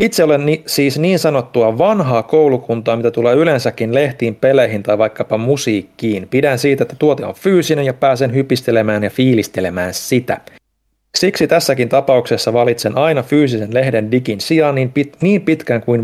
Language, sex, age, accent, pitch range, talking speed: Finnish, male, 30-49, native, 110-145 Hz, 150 wpm